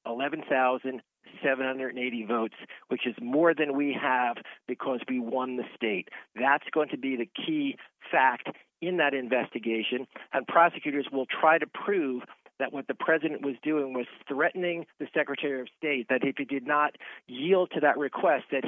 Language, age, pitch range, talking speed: English, 50-69, 130-155 Hz, 165 wpm